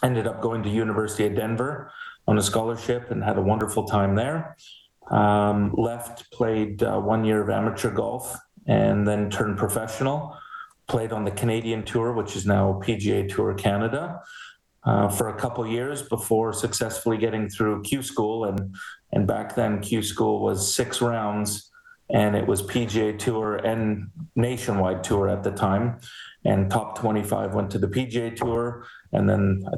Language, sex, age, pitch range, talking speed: English, male, 30-49, 100-115 Hz, 165 wpm